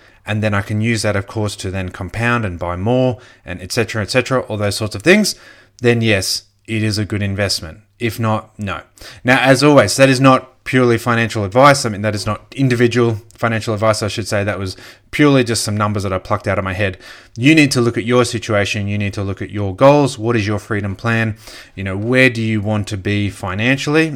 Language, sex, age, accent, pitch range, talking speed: English, male, 30-49, Australian, 100-120 Hz, 235 wpm